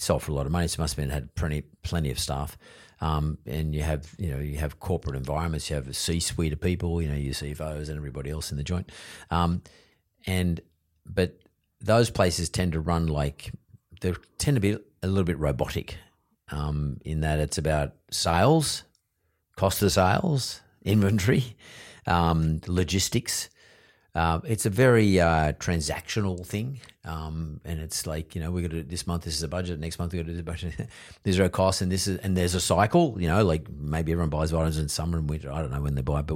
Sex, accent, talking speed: male, Australian, 220 wpm